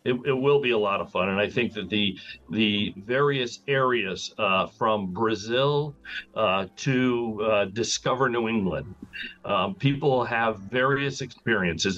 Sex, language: male, English